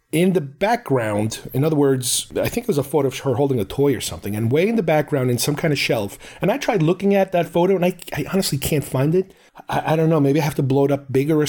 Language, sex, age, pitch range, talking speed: English, male, 40-59, 130-170 Hz, 290 wpm